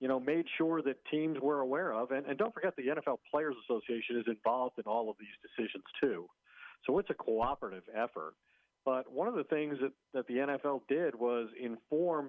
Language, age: English, 50-69